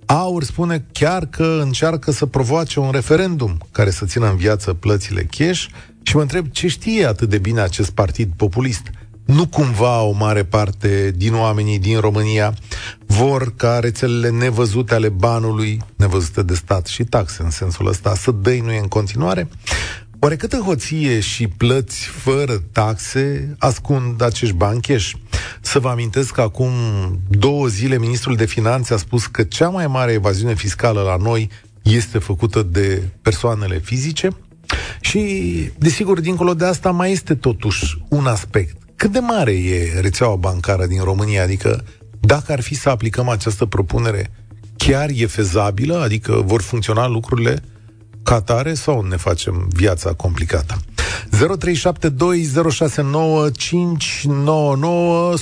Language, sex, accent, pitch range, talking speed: Romanian, male, native, 105-145 Hz, 140 wpm